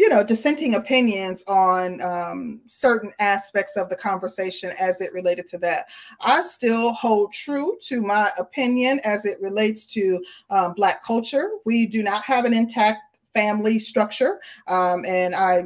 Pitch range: 190-230 Hz